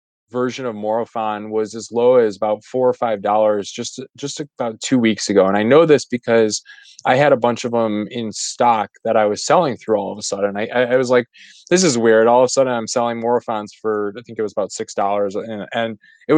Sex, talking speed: male, 235 wpm